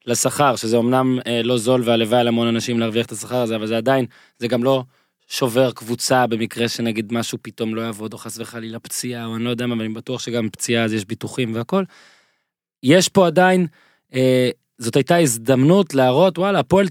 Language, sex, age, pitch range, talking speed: Hebrew, male, 20-39, 115-155 Hz, 190 wpm